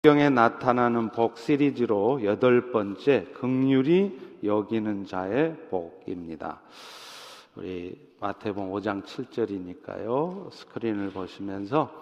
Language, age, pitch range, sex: Korean, 40-59, 105-155 Hz, male